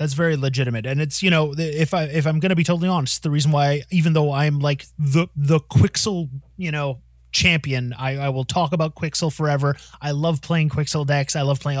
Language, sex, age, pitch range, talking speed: English, male, 30-49, 135-165 Hz, 225 wpm